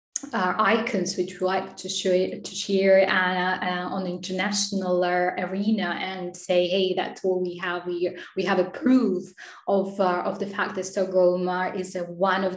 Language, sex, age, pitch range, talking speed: English, female, 10-29, 185-205 Hz, 190 wpm